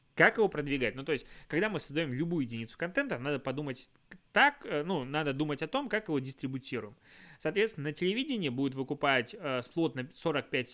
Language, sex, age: Russian, male, 20-39